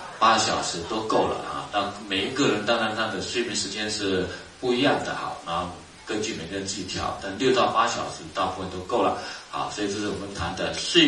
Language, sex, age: Chinese, male, 30-49